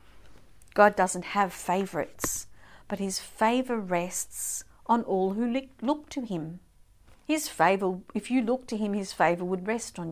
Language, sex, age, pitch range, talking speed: English, female, 50-69, 155-215 Hz, 155 wpm